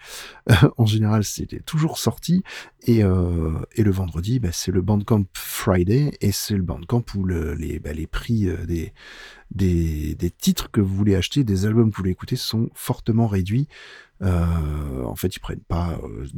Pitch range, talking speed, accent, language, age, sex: 90-115 Hz, 185 wpm, French, French, 40-59, male